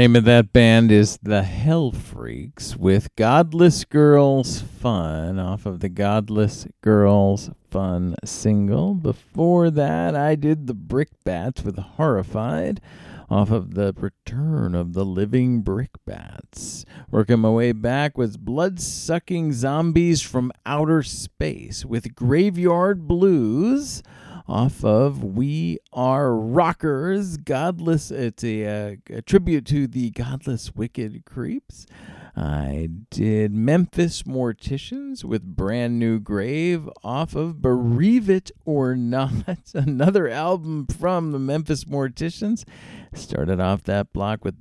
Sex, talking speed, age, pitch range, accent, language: male, 120 wpm, 50-69, 100-150 Hz, American, English